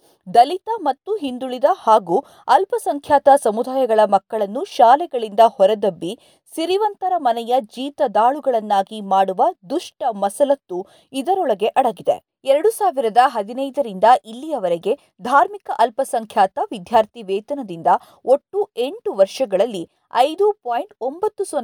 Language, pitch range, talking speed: Kannada, 210-330 Hz, 85 wpm